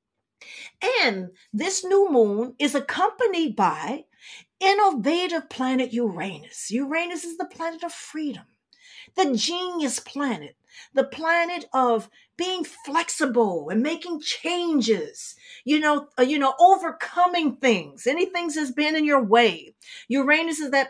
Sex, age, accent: female, 50-69, American